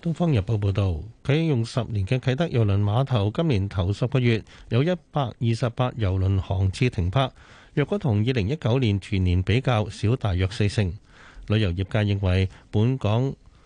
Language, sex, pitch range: Chinese, male, 100-130 Hz